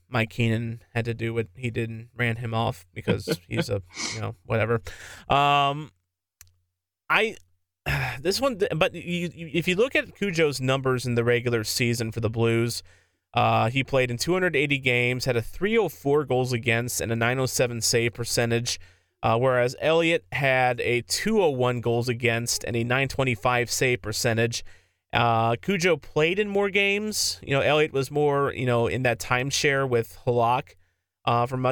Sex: male